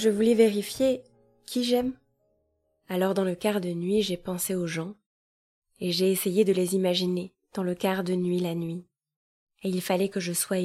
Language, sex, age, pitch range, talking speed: French, female, 20-39, 175-195 Hz, 190 wpm